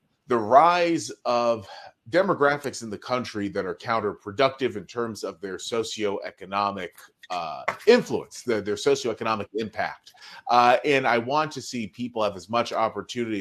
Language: English